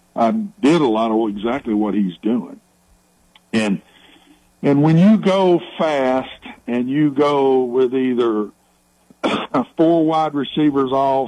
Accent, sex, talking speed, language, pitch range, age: American, male, 130 wpm, English, 110-160 Hz, 60-79